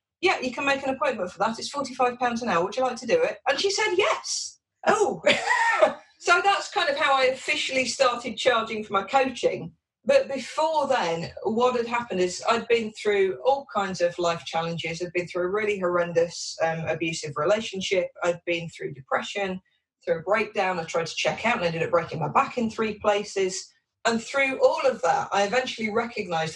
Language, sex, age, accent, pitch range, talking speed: English, female, 40-59, British, 175-250 Hz, 200 wpm